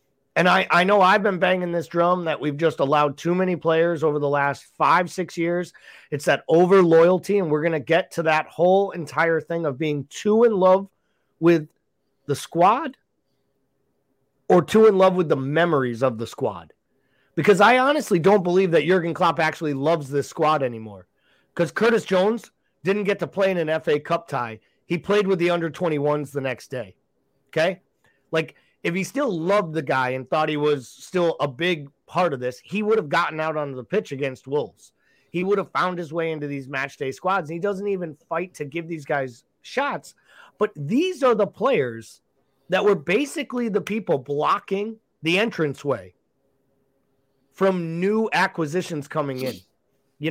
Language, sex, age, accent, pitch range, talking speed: English, male, 30-49, American, 145-190 Hz, 185 wpm